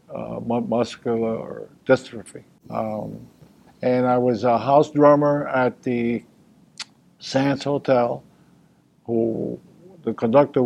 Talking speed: 95 wpm